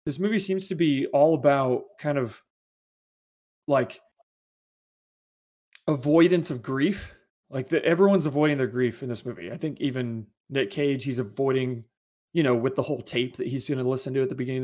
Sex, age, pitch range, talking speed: male, 20-39, 120-150 Hz, 180 wpm